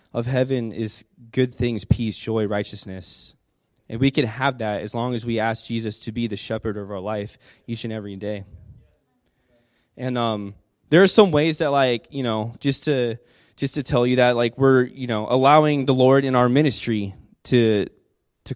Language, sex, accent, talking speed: English, male, American, 190 wpm